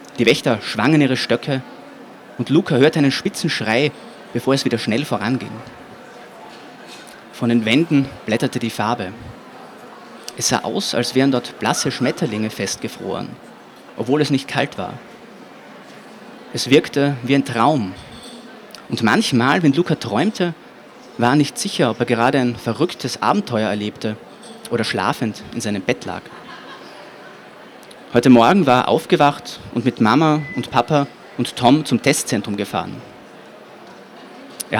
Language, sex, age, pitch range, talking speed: German, male, 30-49, 115-140 Hz, 135 wpm